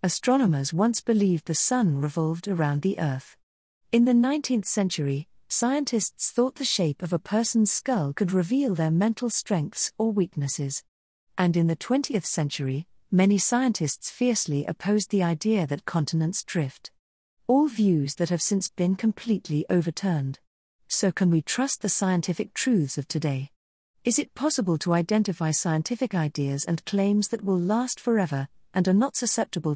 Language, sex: English, female